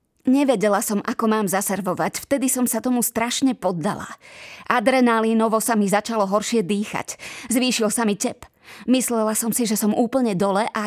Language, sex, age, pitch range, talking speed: Slovak, female, 20-39, 205-235 Hz, 160 wpm